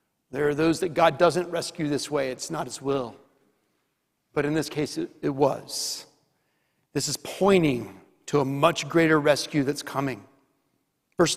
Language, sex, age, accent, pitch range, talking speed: English, male, 40-59, American, 150-200 Hz, 165 wpm